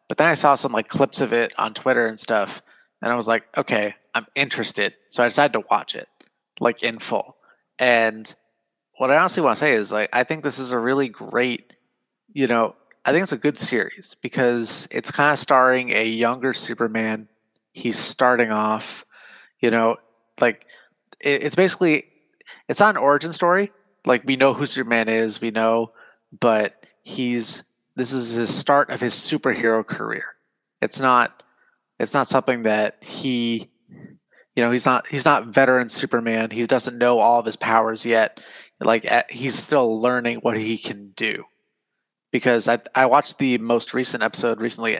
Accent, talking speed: American, 175 wpm